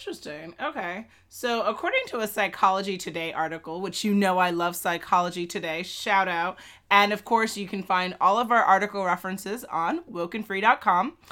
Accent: American